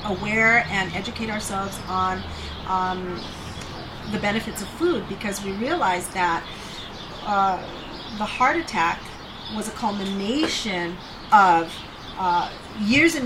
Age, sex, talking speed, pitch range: 40-59, female, 115 wpm, 180-220 Hz